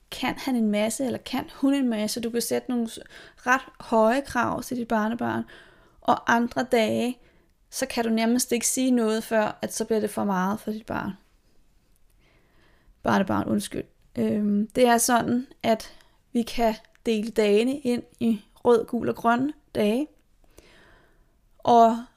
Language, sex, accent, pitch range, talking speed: Danish, female, native, 215-260 Hz, 160 wpm